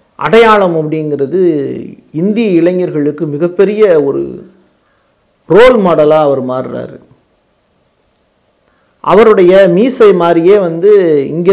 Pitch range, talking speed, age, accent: 150-195 Hz, 80 wpm, 40-59, native